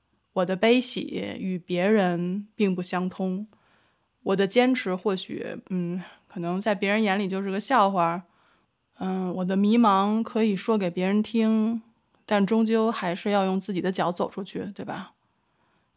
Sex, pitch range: female, 185-225 Hz